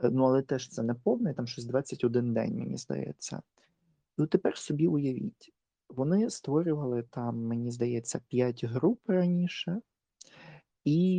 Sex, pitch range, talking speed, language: male, 120-155 Hz, 135 wpm, Ukrainian